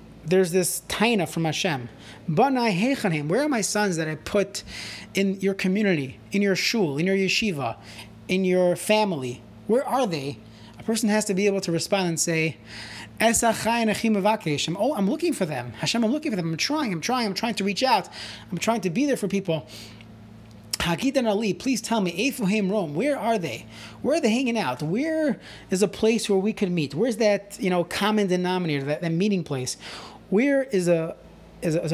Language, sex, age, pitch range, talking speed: English, male, 30-49, 145-205 Hz, 185 wpm